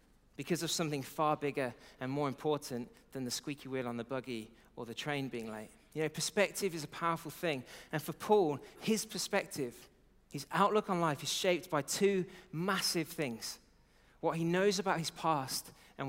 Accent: British